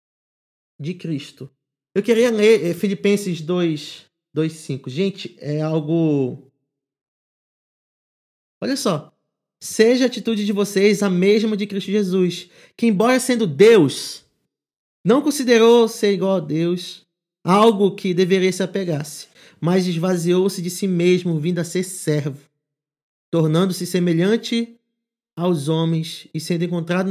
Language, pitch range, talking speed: Portuguese, 160-205 Hz, 125 wpm